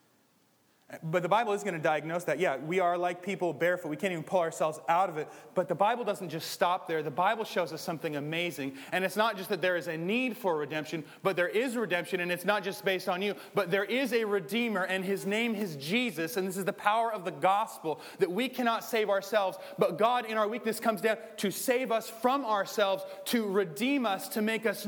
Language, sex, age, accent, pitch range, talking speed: English, male, 30-49, American, 175-225 Hz, 235 wpm